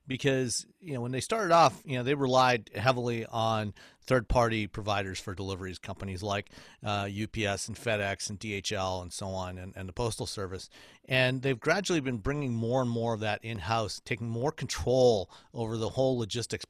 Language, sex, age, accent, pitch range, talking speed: English, male, 40-59, American, 105-130 Hz, 185 wpm